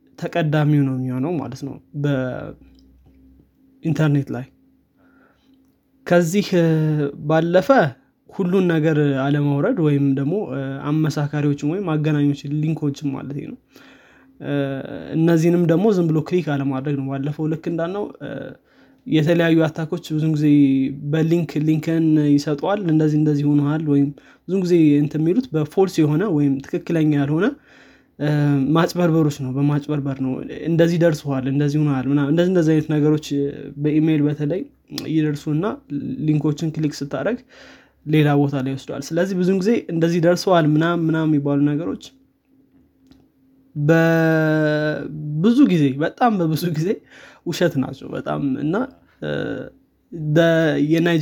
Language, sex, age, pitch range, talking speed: Amharic, male, 20-39, 145-170 Hz, 100 wpm